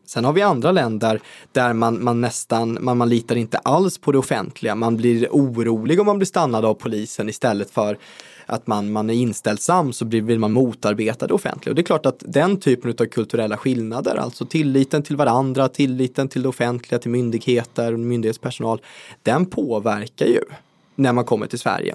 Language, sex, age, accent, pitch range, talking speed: Swedish, male, 20-39, native, 110-140 Hz, 190 wpm